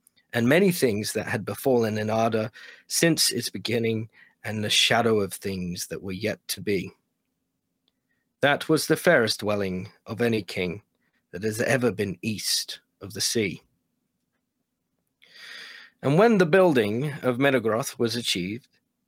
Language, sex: English, male